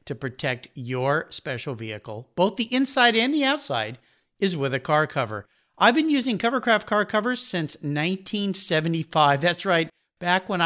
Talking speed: 160 wpm